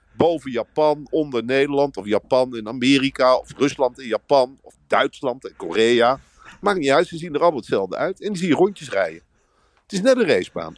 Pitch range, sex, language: 135-185 Hz, male, Dutch